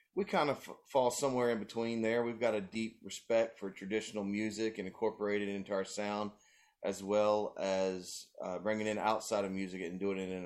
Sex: male